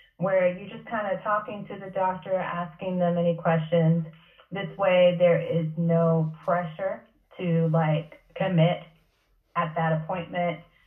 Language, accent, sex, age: English, American, female, 30-49